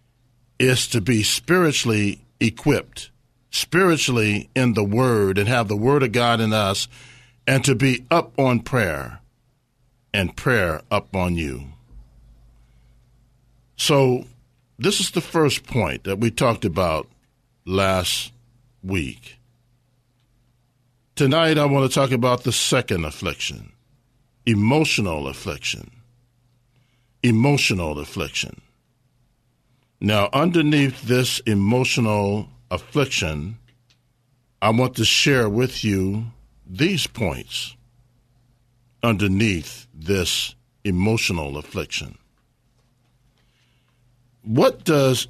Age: 50-69